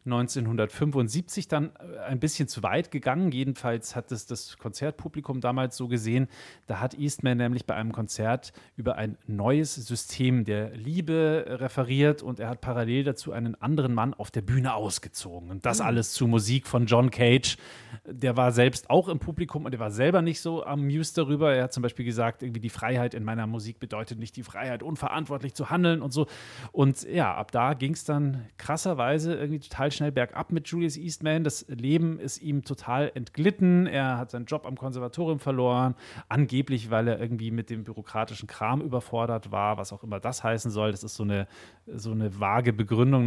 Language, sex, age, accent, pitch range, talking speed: German, male, 30-49, German, 115-145 Hz, 190 wpm